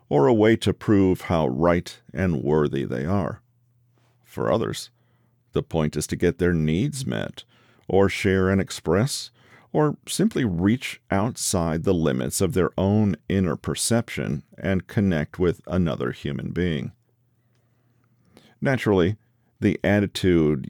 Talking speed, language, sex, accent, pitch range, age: 130 wpm, English, male, American, 85-120 Hz, 50-69